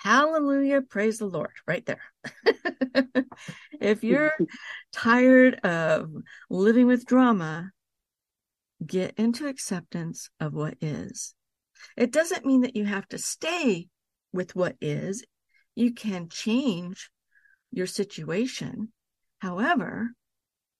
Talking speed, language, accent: 105 wpm, English, American